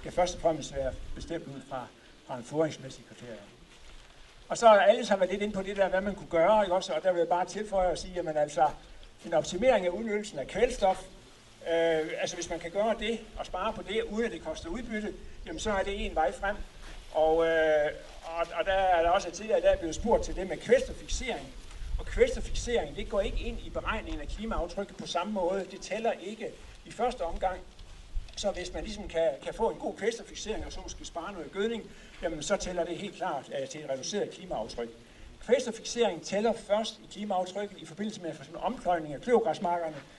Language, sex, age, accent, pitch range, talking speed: Danish, male, 60-79, native, 160-210 Hz, 215 wpm